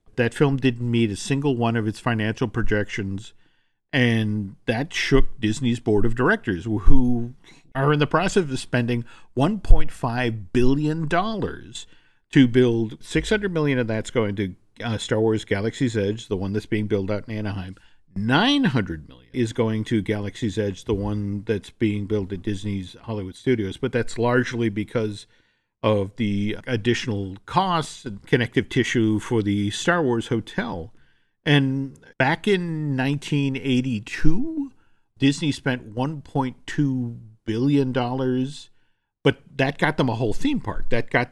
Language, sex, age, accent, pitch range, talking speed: English, male, 50-69, American, 105-135 Hz, 145 wpm